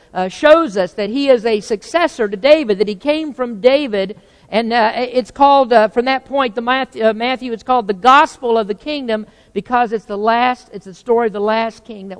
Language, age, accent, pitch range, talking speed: English, 50-69, American, 200-270 Hz, 225 wpm